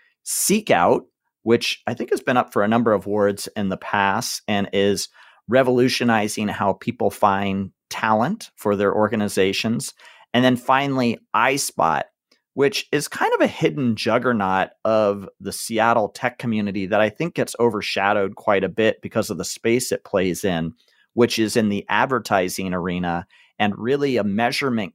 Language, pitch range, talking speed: English, 100-120 Hz, 160 wpm